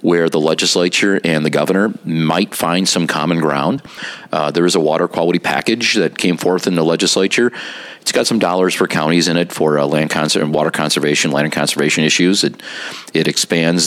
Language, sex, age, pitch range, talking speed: English, male, 40-59, 75-95 Hz, 200 wpm